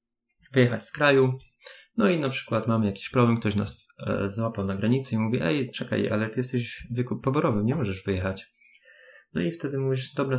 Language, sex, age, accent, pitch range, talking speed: Polish, male, 20-39, native, 100-120 Hz, 190 wpm